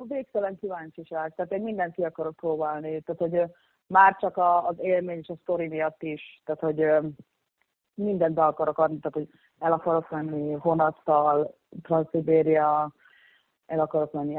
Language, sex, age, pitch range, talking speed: Hungarian, female, 30-49, 150-175 Hz, 145 wpm